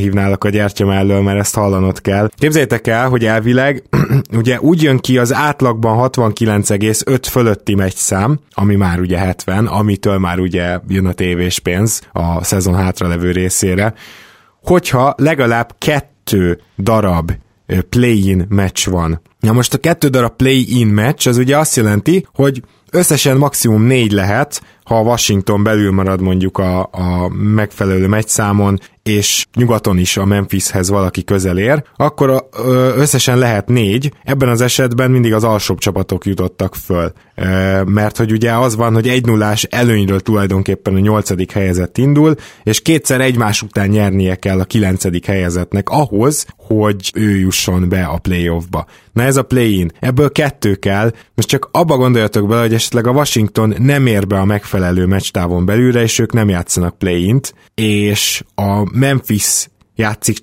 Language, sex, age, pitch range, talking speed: Hungarian, male, 20-39, 95-125 Hz, 155 wpm